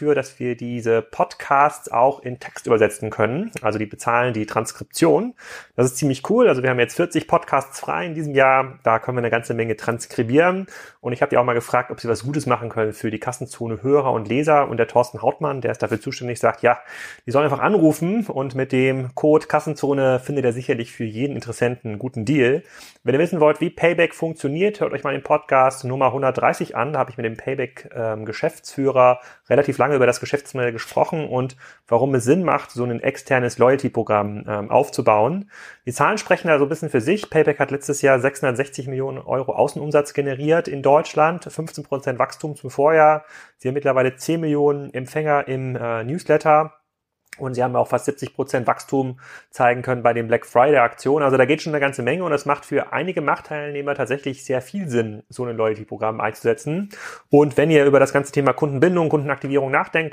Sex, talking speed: male, 195 wpm